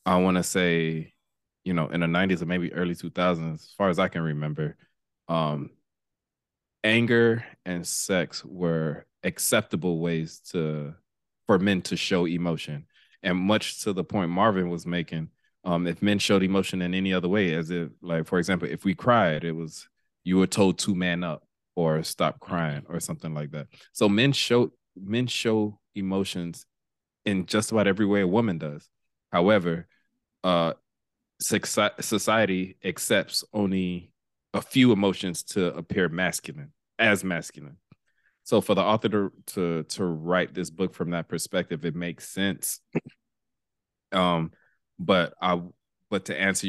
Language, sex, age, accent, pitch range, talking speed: English, male, 20-39, American, 85-95 Hz, 155 wpm